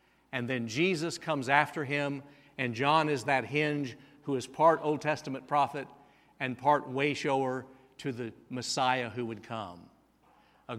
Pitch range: 130-175 Hz